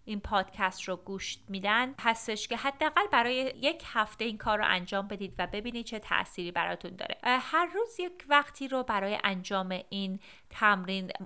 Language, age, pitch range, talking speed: Persian, 30-49, 195-255 Hz, 165 wpm